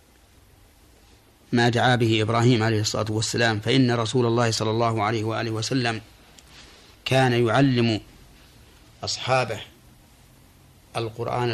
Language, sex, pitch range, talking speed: Arabic, male, 105-125 Hz, 100 wpm